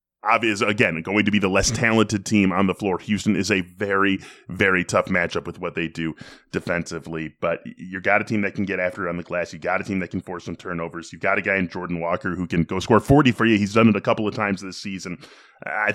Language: English